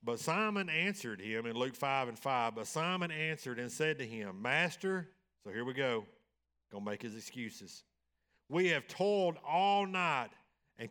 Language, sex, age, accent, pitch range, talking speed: English, male, 50-69, American, 95-135 Hz, 175 wpm